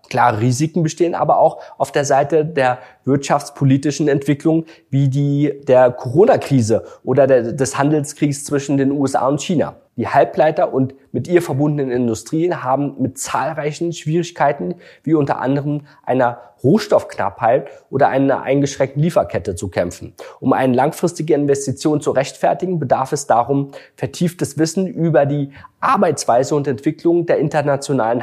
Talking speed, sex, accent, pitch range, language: 135 wpm, male, German, 130-155 Hz, German